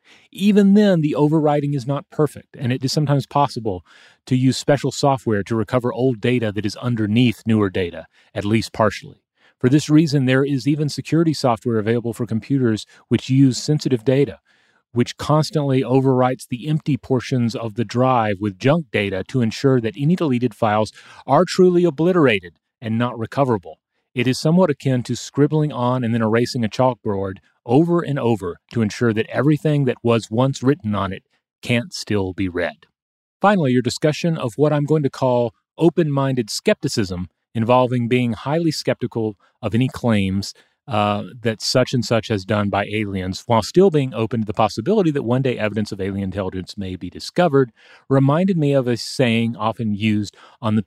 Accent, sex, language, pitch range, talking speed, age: American, male, English, 110-140 Hz, 175 wpm, 30-49